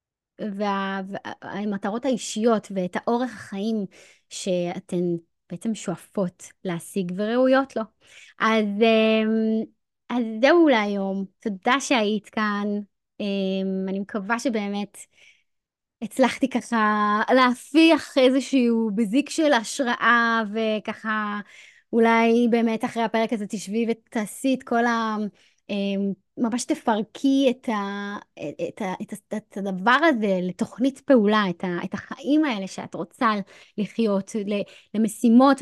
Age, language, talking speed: 20-39, Hebrew, 90 wpm